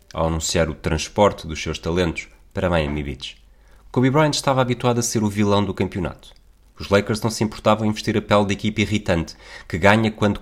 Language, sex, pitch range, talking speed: Portuguese, male, 85-125 Hz, 200 wpm